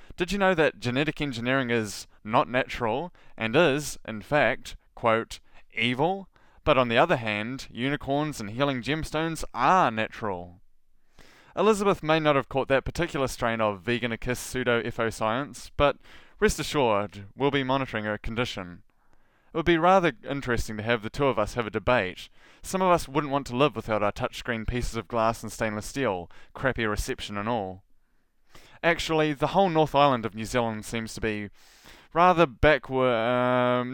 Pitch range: 110-145 Hz